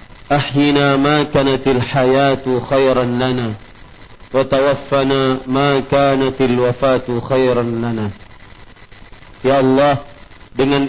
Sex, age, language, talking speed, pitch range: male, 40-59, Malay, 85 wpm, 120-140 Hz